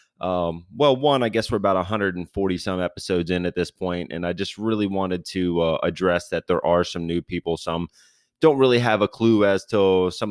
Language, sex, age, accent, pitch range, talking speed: English, male, 30-49, American, 90-120 Hz, 215 wpm